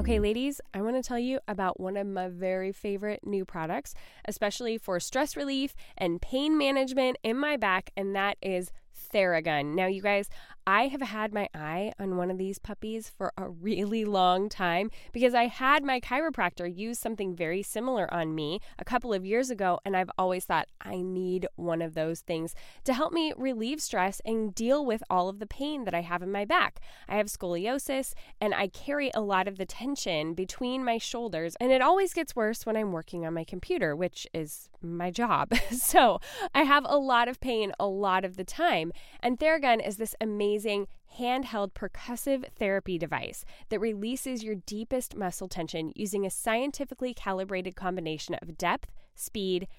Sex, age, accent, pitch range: female, 10-29, American, 185-245 Hz